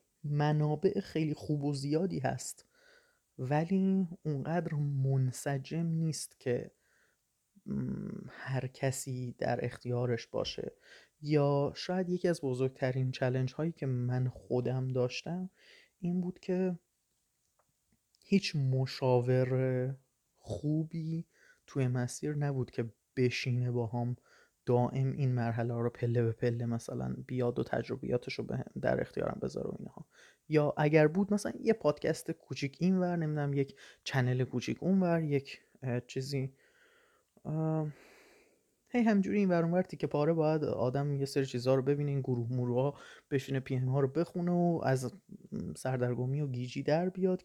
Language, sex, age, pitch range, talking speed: Persian, male, 30-49, 125-175 Hz, 125 wpm